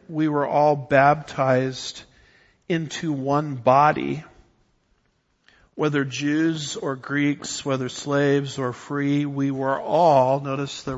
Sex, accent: male, American